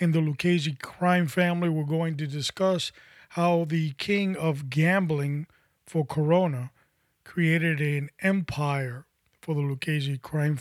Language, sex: English, male